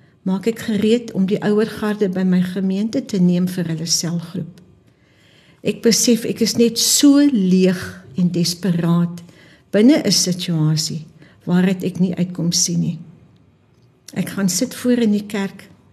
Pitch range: 170-225 Hz